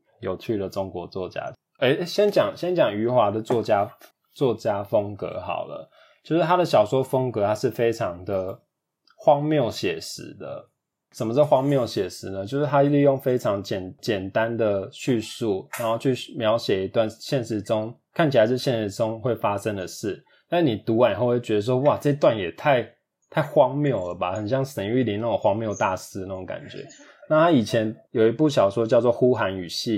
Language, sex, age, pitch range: Chinese, male, 20-39, 105-145 Hz